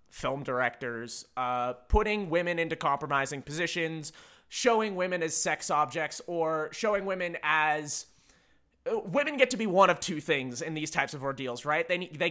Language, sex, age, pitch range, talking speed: English, male, 20-39, 145-180 Hz, 160 wpm